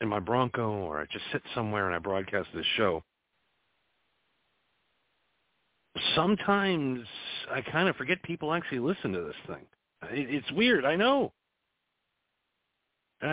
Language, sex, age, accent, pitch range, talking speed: English, male, 50-69, American, 110-165 Hz, 130 wpm